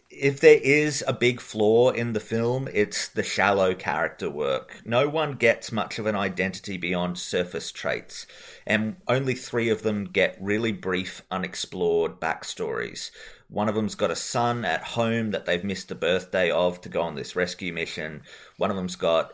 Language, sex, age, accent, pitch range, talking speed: English, male, 30-49, Australian, 95-135 Hz, 185 wpm